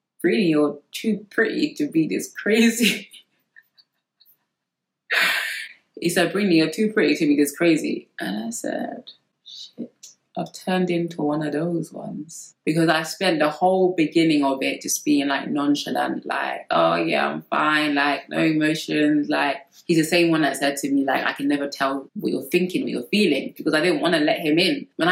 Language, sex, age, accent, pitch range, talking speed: English, female, 20-39, British, 140-220 Hz, 185 wpm